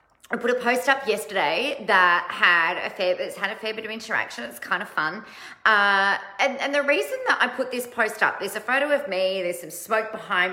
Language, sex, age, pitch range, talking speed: English, female, 30-49, 165-245 Hz, 215 wpm